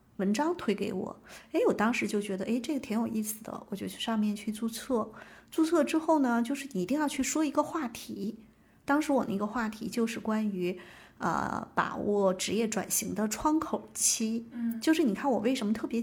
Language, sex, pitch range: Chinese, female, 205-255 Hz